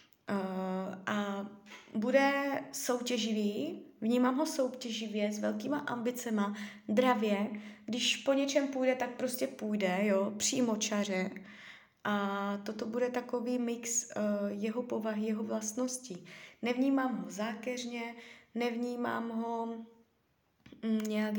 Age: 20-39